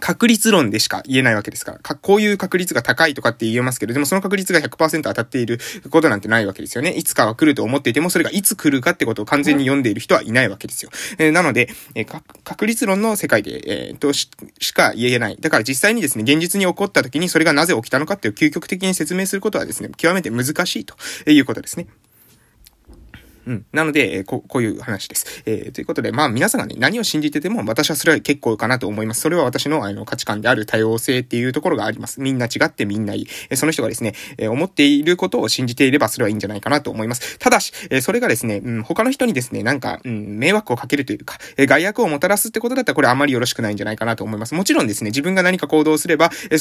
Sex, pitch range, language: male, 120-180 Hz, Japanese